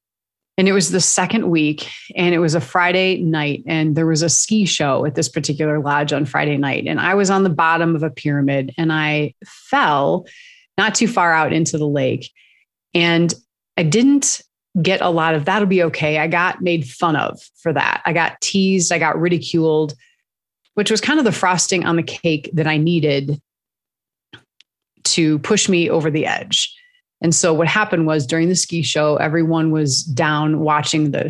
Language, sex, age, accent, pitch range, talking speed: English, female, 30-49, American, 150-180 Hz, 190 wpm